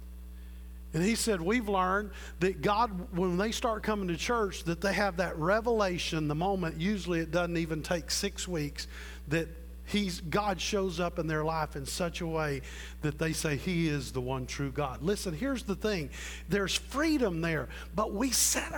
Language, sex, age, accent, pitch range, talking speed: English, male, 50-69, American, 155-220 Hz, 185 wpm